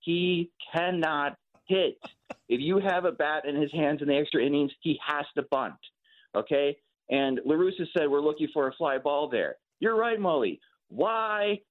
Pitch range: 135-195 Hz